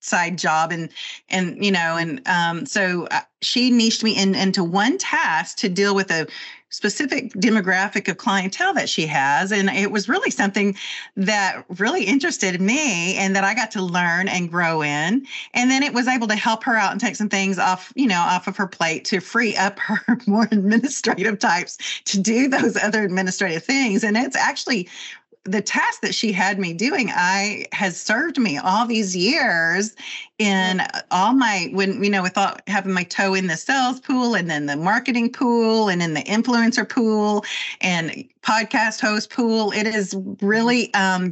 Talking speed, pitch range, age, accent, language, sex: 185 wpm, 185-230 Hz, 40-59, American, English, female